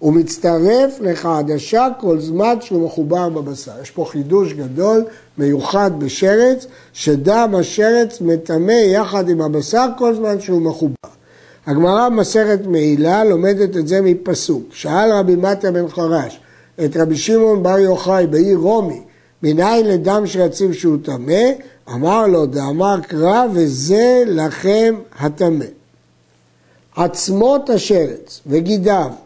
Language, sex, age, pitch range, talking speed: Hebrew, male, 60-79, 155-215 Hz, 120 wpm